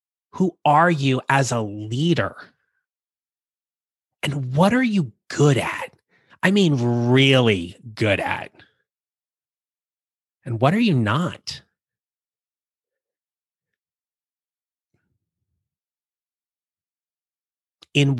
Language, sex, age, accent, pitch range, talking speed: English, male, 30-49, American, 110-150 Hz, 75 wpm